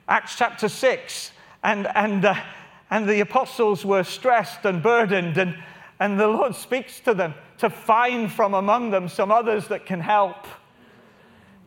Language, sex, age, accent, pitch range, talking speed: English, male, 40-59, British, 180-230 Hz, 155 wpm